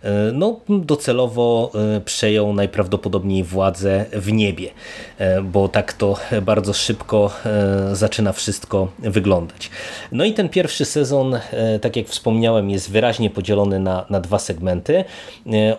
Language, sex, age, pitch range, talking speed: Polish, male, 30-49, 100-115 Hz, 115 wpm